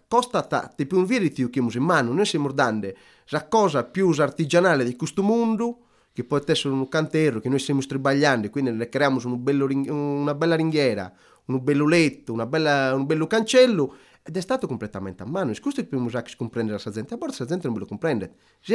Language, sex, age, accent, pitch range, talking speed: Italian, male, 30-49, native, 125-205 Hz, 220 wpm